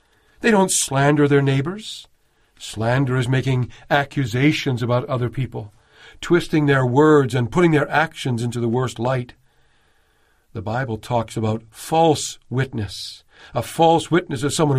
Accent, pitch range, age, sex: American, 115-150 Hz, 50-69, male